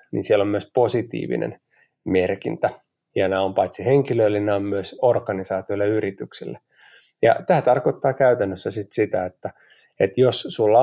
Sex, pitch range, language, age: male, 100-125 Hz, Finnish, 30-49